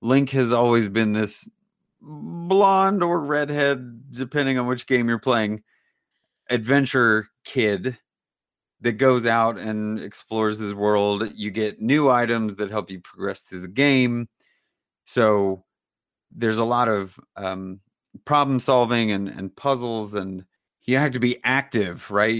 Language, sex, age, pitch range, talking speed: English, male, 30-49, 100-125 Hz, 140 wpm